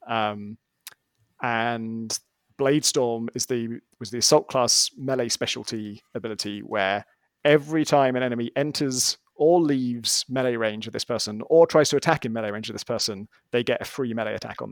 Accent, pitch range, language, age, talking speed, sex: British, 115-140 Hz, English, 30-49, 170 wpm, male